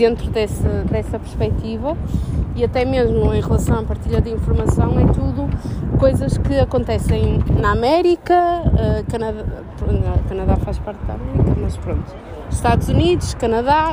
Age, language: 20-39, Portuguese